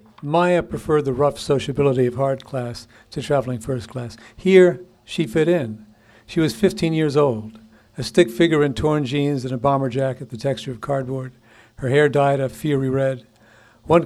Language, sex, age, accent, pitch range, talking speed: English, male, 60-79, American, 120-150 Hz, 180 wpm